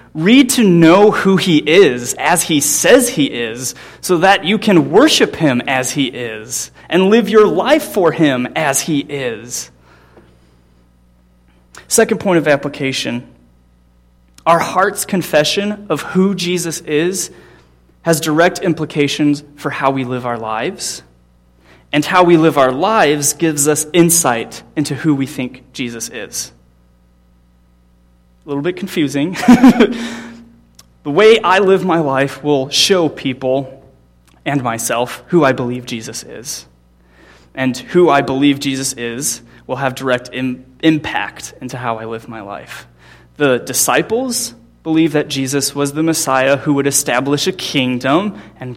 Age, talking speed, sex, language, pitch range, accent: 30-49, 140 wpm, male, English, 110-165 Hz, American